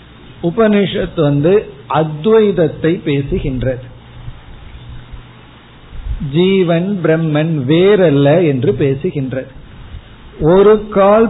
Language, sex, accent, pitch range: Tamil, male, native, 140-185 Hz